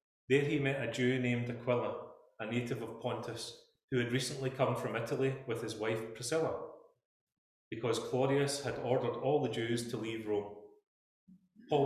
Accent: British